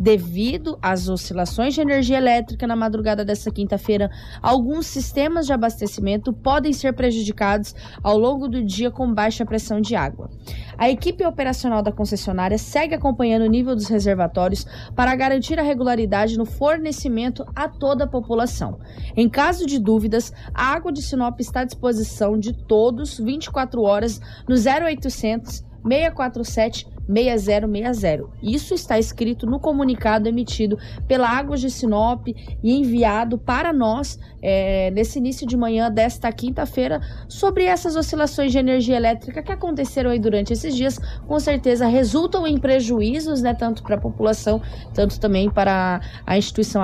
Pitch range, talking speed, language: 215-270 Hz, 145 wpm, Portuguese